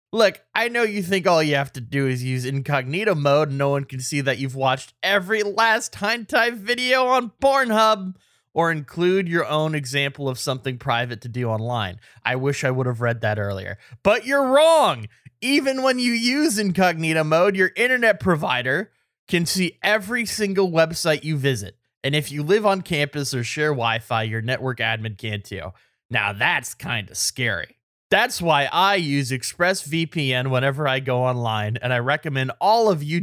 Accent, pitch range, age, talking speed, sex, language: American, 130-195 Hz, 20-39, 180 wpm, male, English